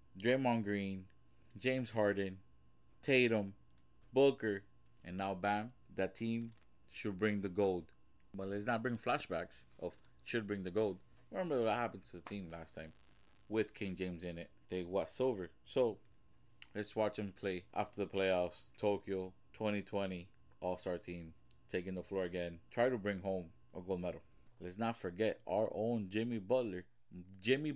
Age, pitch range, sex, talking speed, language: 20-39, 95-120 Hz, male, 155 wpm, English